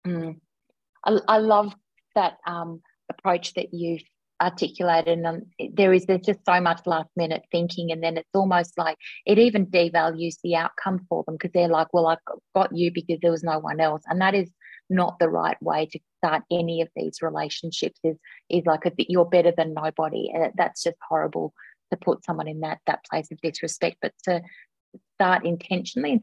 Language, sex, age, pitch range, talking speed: English, female, 30-49, 165-185 Hz, 195 wpm